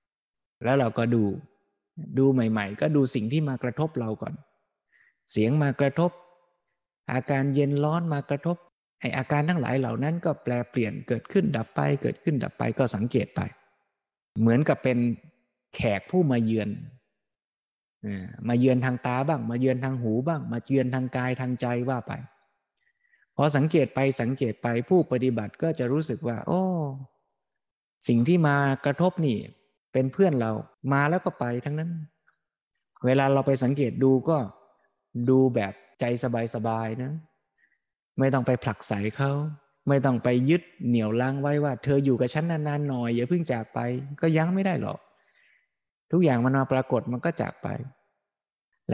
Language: Thai